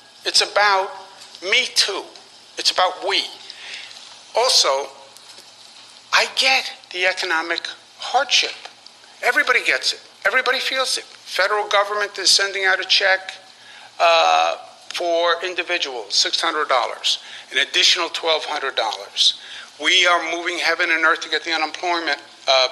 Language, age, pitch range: English, 50-69, 160-205 Hz